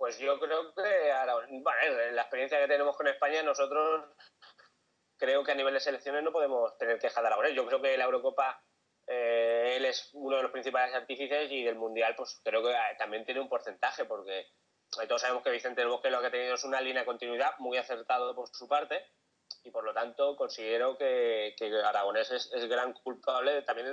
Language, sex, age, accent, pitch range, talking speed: Spanish, male, 20-39, Spanish, 125-170 Hz, 205 wpm